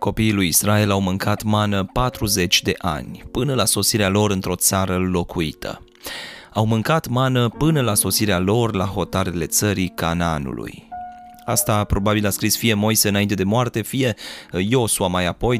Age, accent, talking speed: 20-39, native, 155 wpm